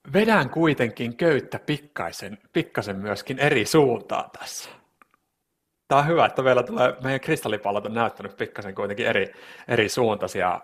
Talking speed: 130 wpm